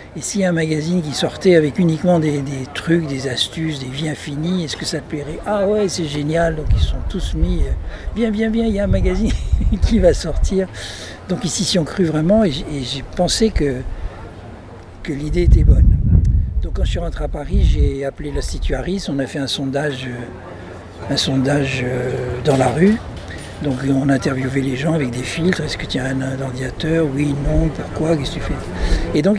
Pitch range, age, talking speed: 120-165 Hz, 60-79, 215 wpm